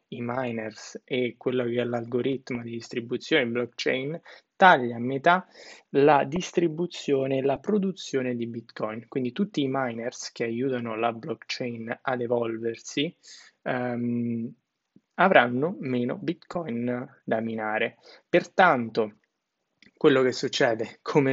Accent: native